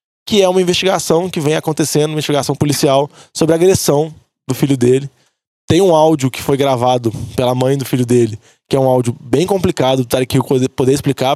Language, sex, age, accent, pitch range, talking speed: Portuguese, male, 20-39, Brazilian, 130-160 Hz, 195 wpm